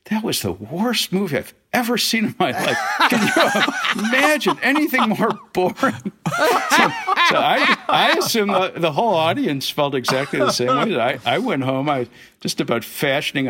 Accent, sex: American, male